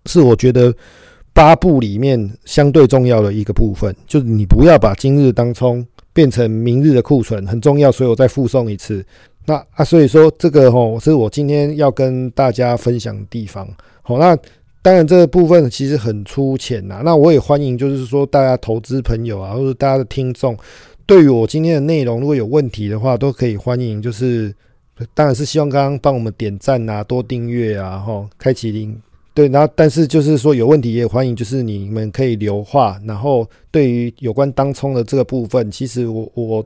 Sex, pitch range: male, 115-140 Hz